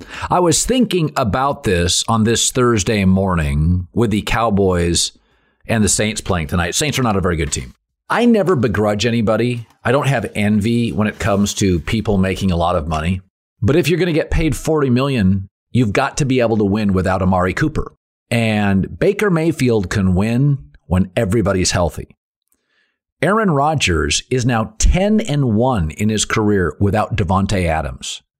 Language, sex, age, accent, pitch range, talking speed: English, male, 50-69, American, 95-130 Hz, 175 wpm